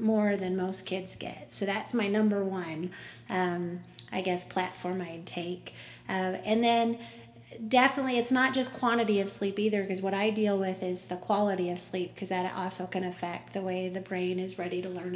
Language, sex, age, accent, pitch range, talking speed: English, female, 30-49, American, 185-215 Hz, 200 wpm